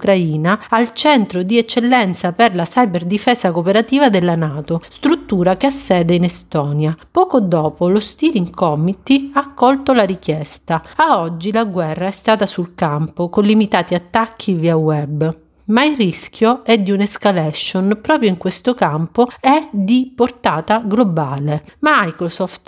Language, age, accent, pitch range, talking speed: Italian, 40-59, native, 170-225 Hz, 145 wpm